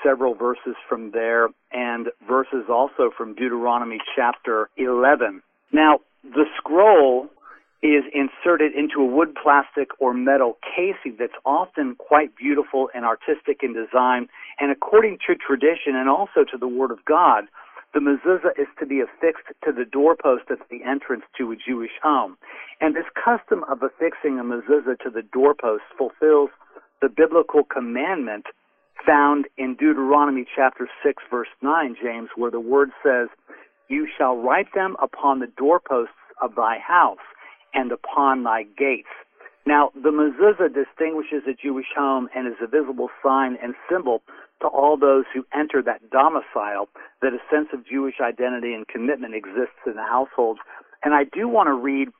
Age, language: 50-69, English